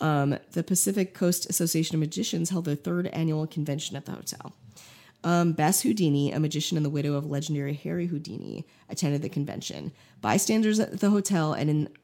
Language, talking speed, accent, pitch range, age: English, 180 wpm, American, 145-185 Hz, 30-49